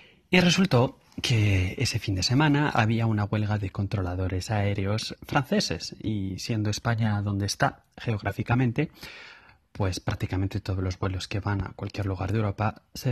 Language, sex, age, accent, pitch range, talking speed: Spanish, male, 30-49, Spanish, 95-110 Hz, 150 wpm